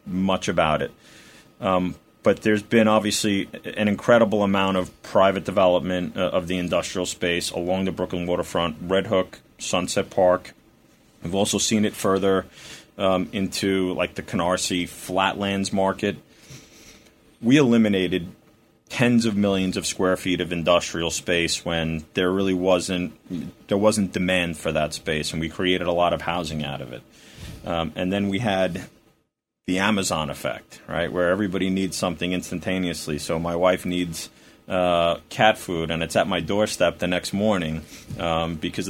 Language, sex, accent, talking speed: English, male, American, 155 wpm